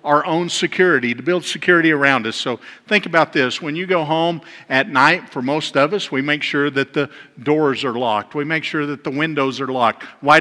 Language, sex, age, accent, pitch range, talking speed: English, male, 50-69, American, 145-170 Hz, 225 wpm